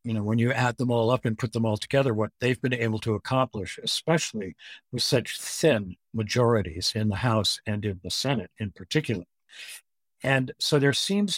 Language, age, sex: English, 60-79, male